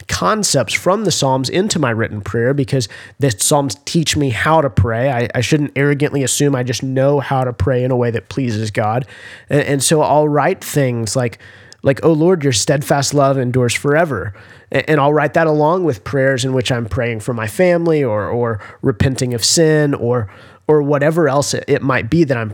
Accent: American